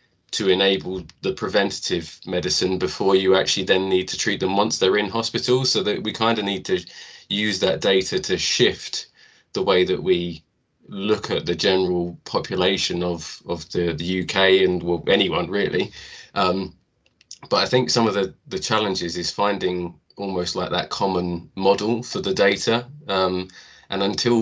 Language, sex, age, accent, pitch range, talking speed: English, male, 20-39, British, 90-110 Hz, 165 wpm